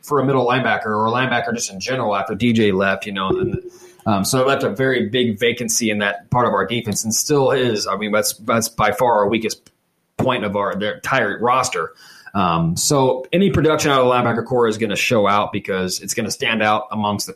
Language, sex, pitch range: English, male, 110-140 Hz